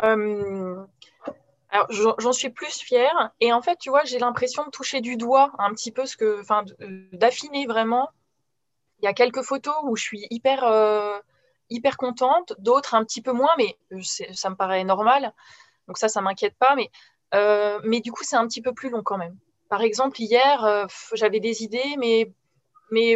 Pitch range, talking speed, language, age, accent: 210-255 Hz, 190 wpm, French, 20-39, French